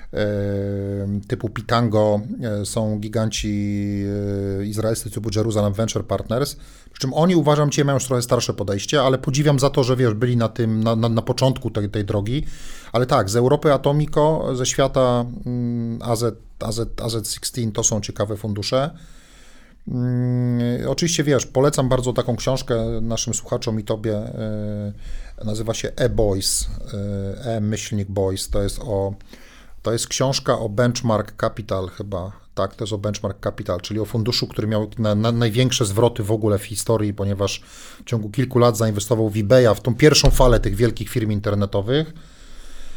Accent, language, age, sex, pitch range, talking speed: native, Polish, 30-49, male, 105-125 Hz, 155 wpm